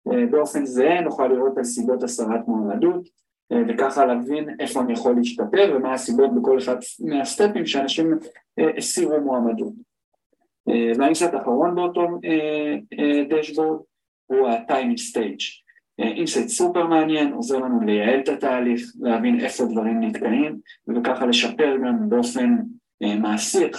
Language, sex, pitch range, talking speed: Hebrew, male, 120-175 Hz, 140 wpm